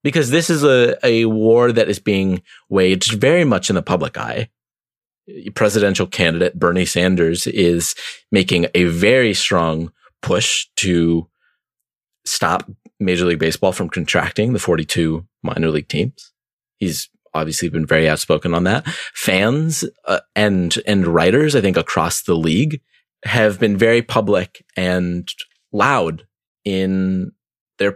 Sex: male